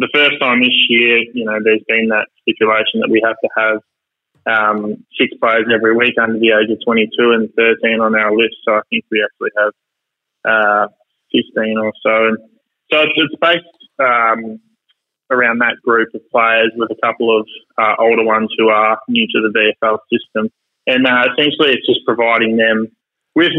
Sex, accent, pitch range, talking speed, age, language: male, Australian, 110-130 Hz, 190 wpm, 20-39, English